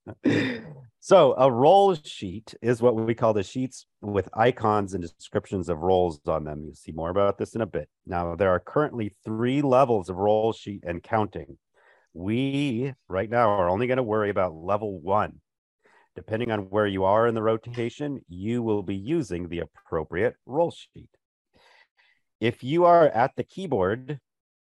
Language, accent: English, American